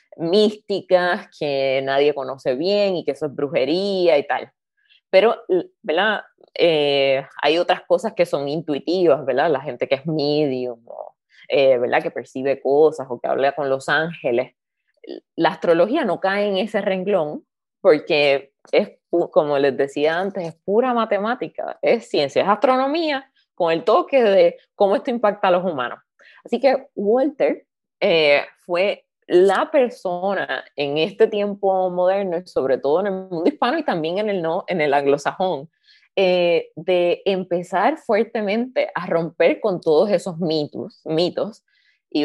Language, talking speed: Spanish, 150 wpm